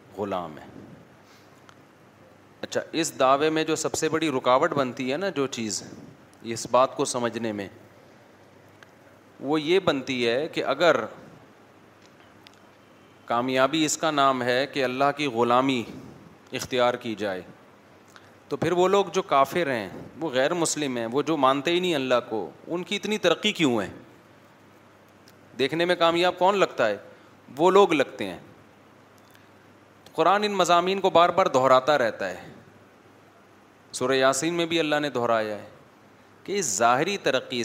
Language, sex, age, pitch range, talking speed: Urdu, male, 40-59, 120-160 Hz, 150 wpm